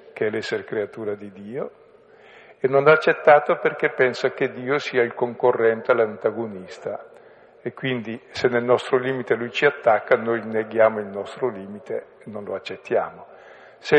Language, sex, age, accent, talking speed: Italian, male, 50-69, native, 155 wpm